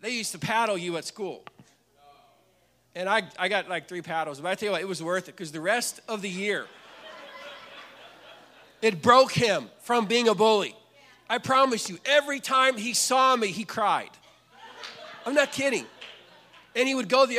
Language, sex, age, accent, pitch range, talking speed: English, male, 40-59, American, 205-250 Hz, 185 wpm